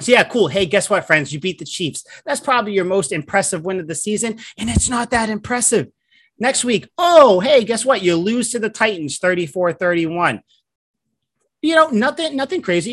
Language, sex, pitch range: English, male, 145-210 Hz